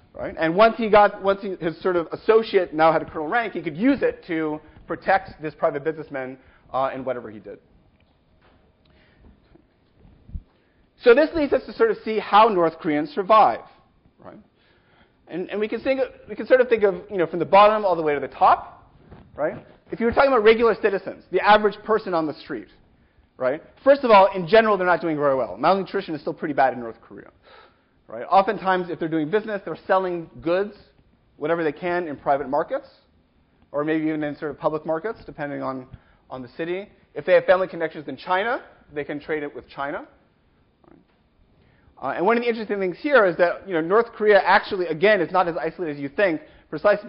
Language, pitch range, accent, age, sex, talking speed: English, 155-210 Hz, American, 30-49, male, 210 wpm